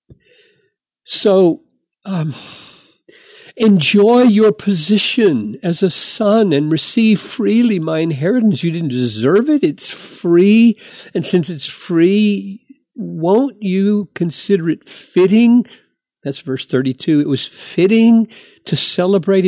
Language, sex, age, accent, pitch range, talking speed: English, male, 50-69, American, 140-210 Hz, 110 wpm